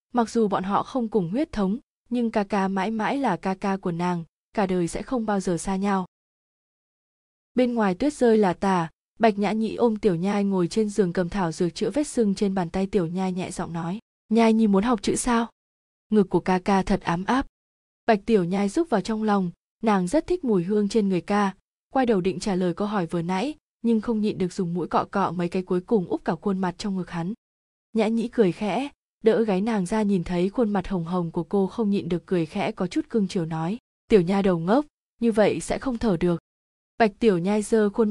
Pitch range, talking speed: 190-225 Hz, 240 wpm